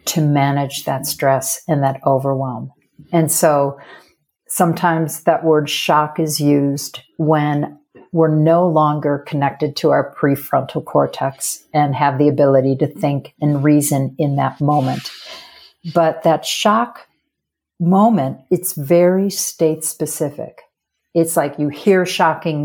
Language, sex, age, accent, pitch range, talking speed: English, female, 50-69, American, 145-170 Hz, 125 wpm